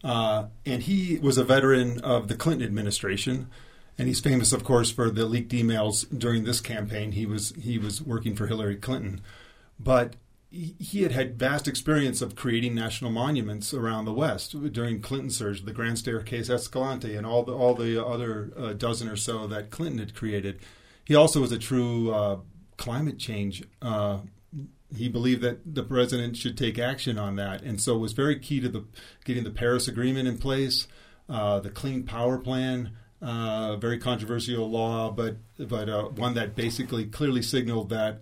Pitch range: 110-125 Hz